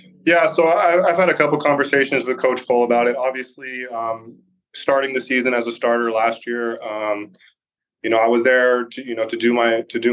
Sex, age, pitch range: male, 20-39, 115-125 Hz